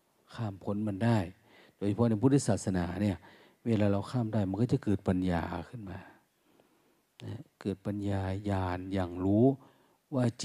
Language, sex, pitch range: Thai, male, 95-115 Hz